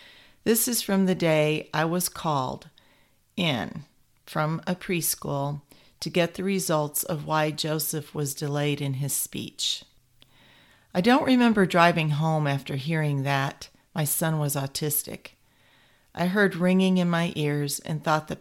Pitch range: 145-170 Hz